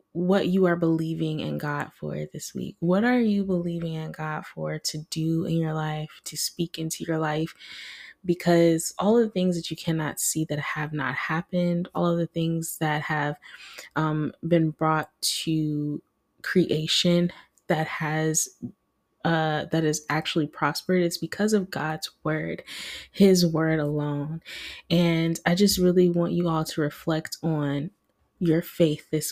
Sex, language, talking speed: female, English, 160 wpm